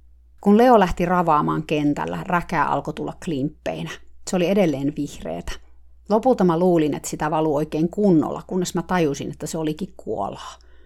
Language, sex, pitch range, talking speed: Finnish, female, 155-195 Hz, 155 wpm